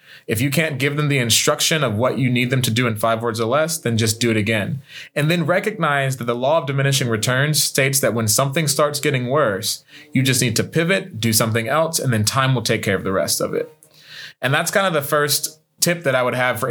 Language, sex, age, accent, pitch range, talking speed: English, male, 20-39, American, 115-150 Hz, 255 wpm